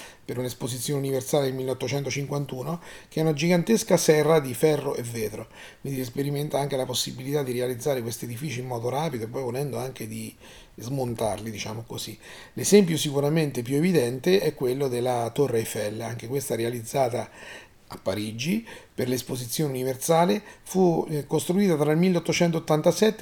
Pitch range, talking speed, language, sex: 120-160 Hz, 145 wpm, Italian, male